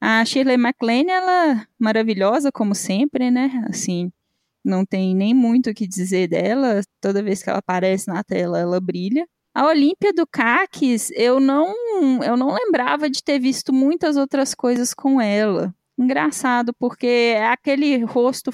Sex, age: female, 10-29